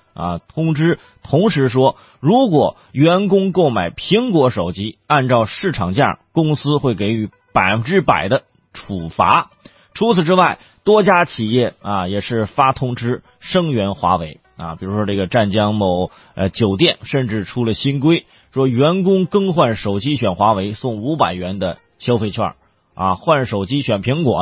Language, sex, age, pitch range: Chinese, male, 30-49, 100-135 Hz